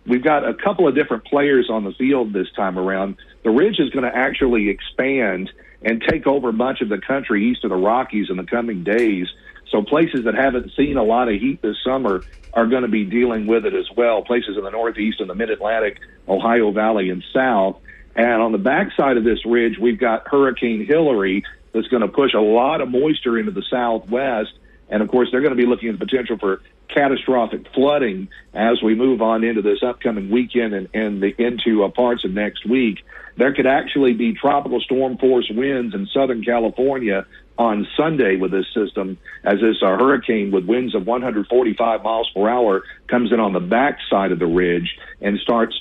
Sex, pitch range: male, 100-125 Hz